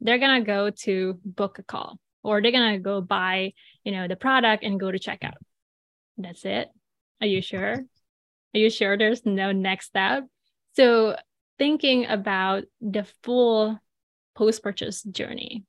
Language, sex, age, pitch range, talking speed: English, female, 20-39, 195-235 Hz, 155 wpm